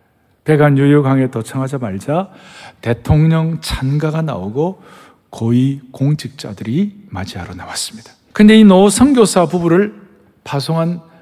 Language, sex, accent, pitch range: Korean, male, native, 130-205 Hz